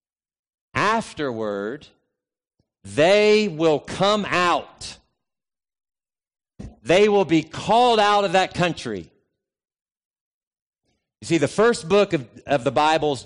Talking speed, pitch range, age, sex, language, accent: 105 wpm, 130-190 Hz, 50-69, male, English, American